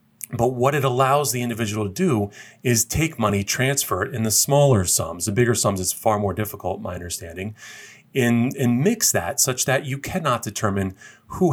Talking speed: 185 wpm